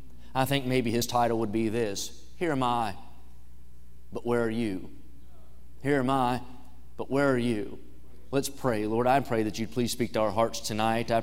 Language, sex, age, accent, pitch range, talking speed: English, male, 30-49, American, 100-125 Hz, 190 wpm